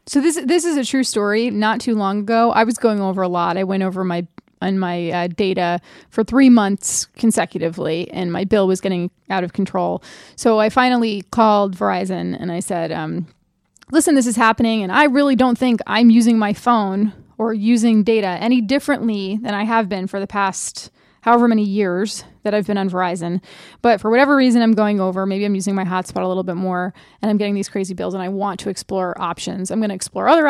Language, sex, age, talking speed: English, female, 20-39, 220 wpm